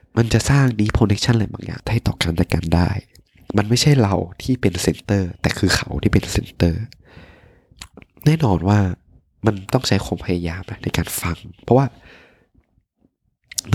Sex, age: male, 20-39